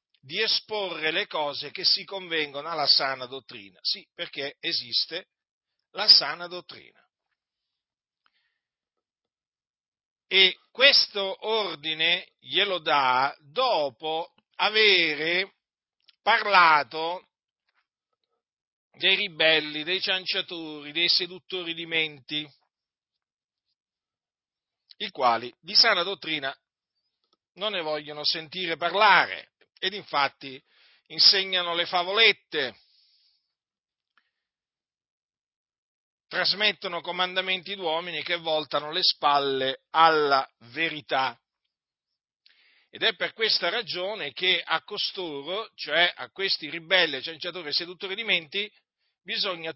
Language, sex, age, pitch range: Italian, male, 50-69, 150-190 Hz